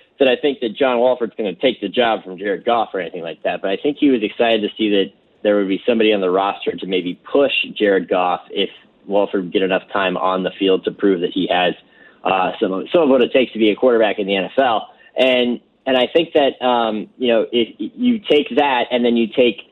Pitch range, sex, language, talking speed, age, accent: 100-120 Hz, male, English, 255 wpm, 30-49, American